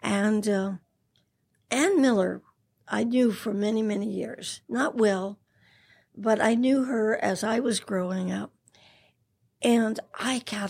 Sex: female